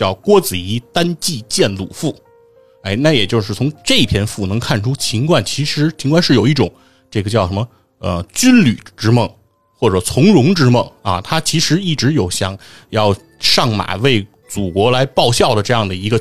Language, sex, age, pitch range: Chinese, male, 30-49, 100-150 Hz